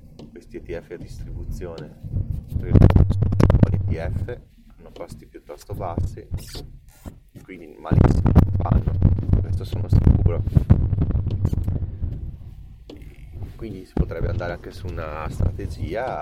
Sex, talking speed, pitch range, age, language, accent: male, 100 wpm, 80-100 Hz, 30-49, Italian, native